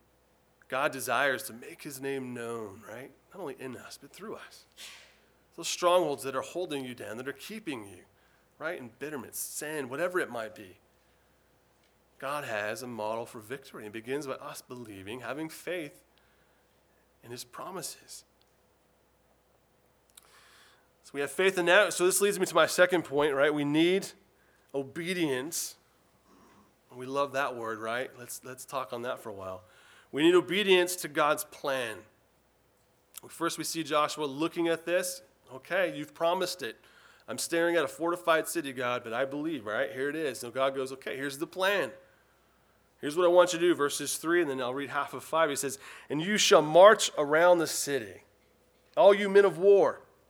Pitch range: 135-175 Hz